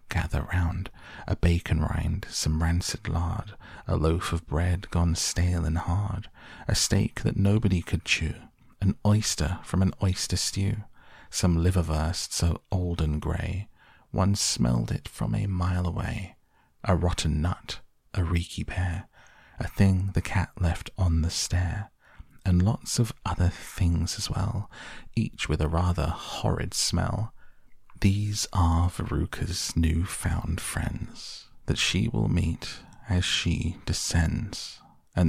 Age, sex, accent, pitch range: 30-49, male, British, 80-100 Hz